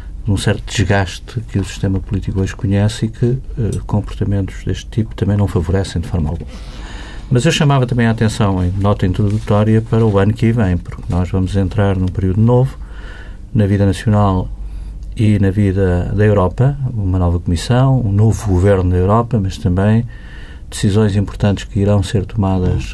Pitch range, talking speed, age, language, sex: 95-110 Hz, 175 wpm, 50-69, Portuguese, male